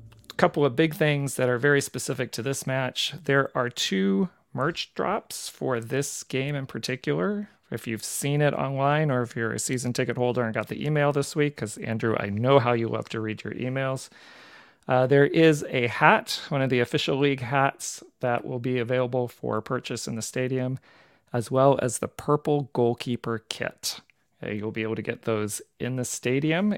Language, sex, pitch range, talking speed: English, male, 115-145 Hz, 195 wpm